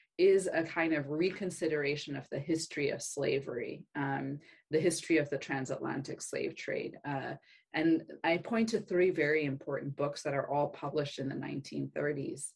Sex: female